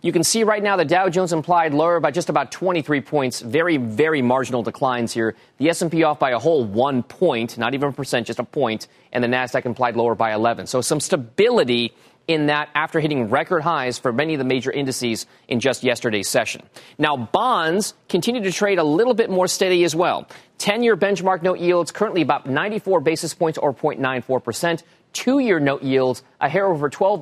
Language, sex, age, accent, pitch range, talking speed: English, male, 30-49, American, 130-185 Hz, 200 wpm